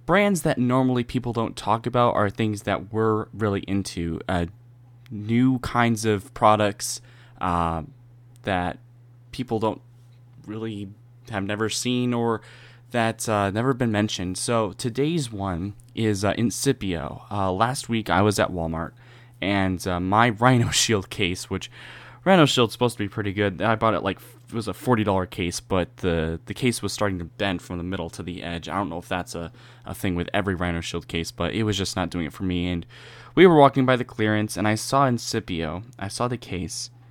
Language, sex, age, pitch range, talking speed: English, male, 10-29, 95-120 Hz, 190 wpm